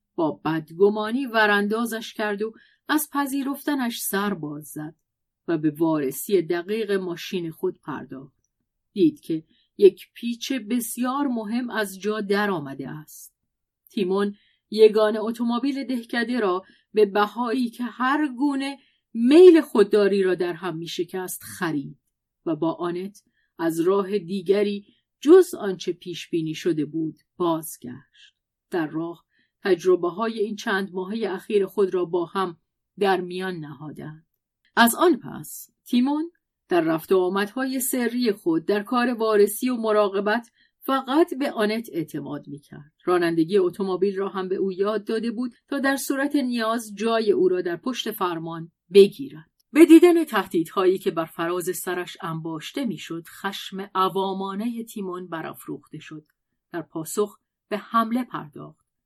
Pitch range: 175-245 Hz